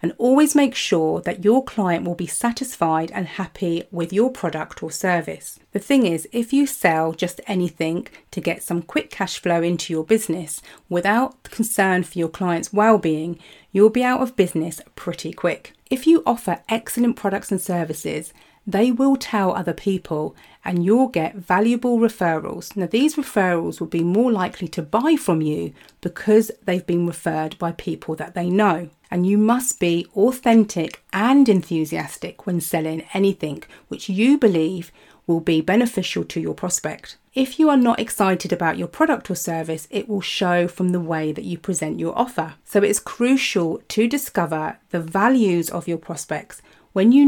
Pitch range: 170-225 Hz